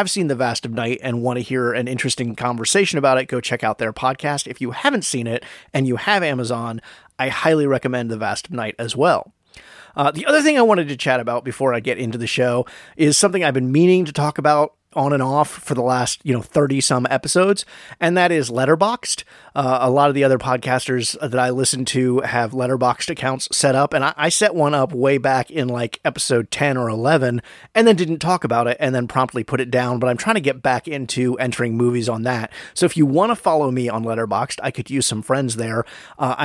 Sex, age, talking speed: male, 30-49, 240 wpm